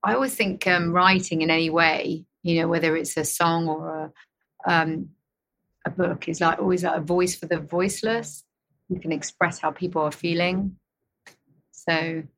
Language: English